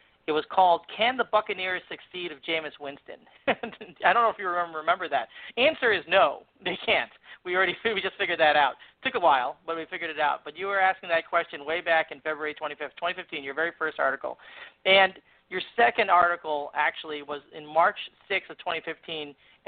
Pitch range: 160-195 Hz